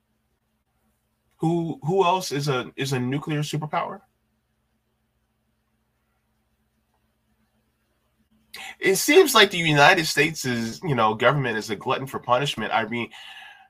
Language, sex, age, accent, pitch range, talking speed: English, male, 20-39, American, 110-130 Hz, 115 wpm